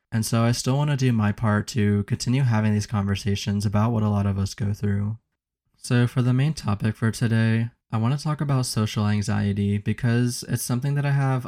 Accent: American